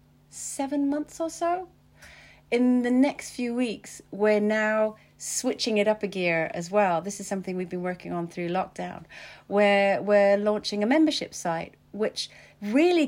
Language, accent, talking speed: English, British, 160 wpm